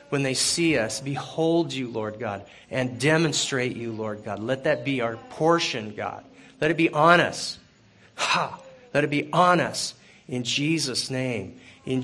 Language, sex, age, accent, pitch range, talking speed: English, male, 40-59, American, 125-155 Hz, 170 wpm